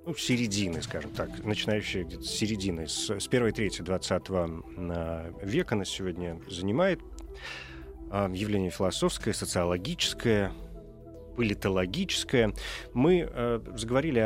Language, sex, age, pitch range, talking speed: Russian, male, 30-49, 95-120 Hz, 100 wpm